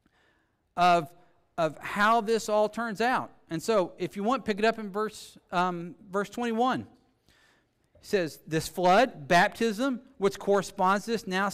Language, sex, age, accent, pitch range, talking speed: English, male, 50-69, American, 120-185 Hz, 155 wpm